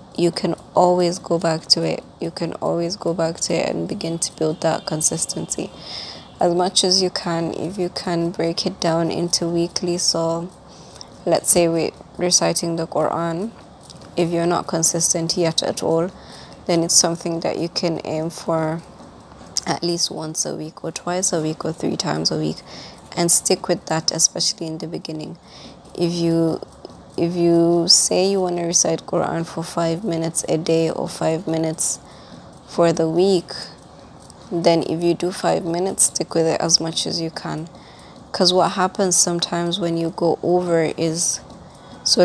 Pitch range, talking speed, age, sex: 165-175 Hz, 175 wpm, 20-39, female